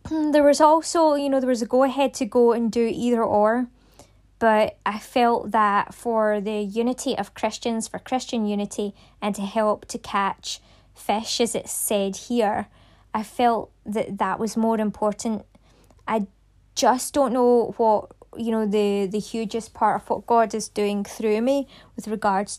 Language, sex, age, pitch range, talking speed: English, female, 20-39, 215-255 Hz, 170 wpm